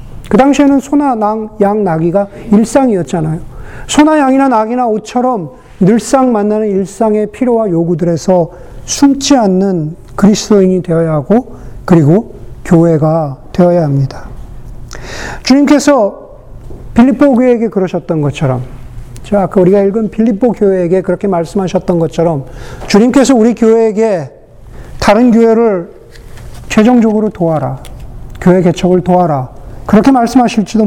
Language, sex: Korean, male